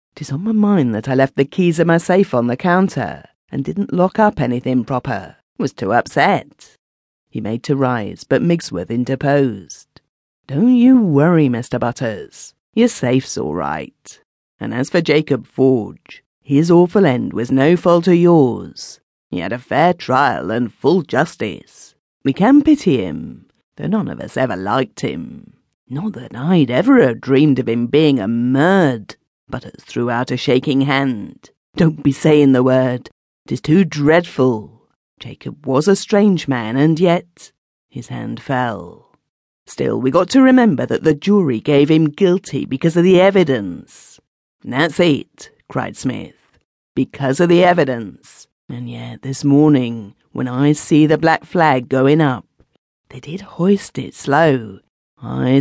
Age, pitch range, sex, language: 40-59, 125-175 Hz, female, English